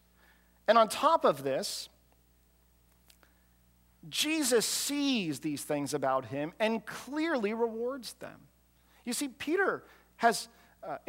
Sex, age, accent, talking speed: male, 40-59, American, 110 wpm